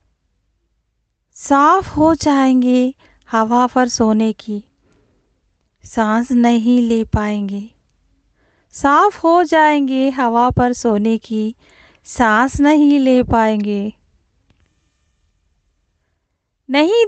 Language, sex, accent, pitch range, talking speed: Telugu, female, native, 210-285 Hz, 80 wpm